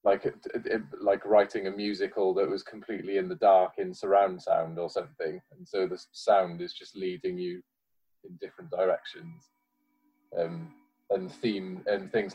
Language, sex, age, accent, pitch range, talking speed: English, male, 20-39, British, 95-150 Hz, 155 wpm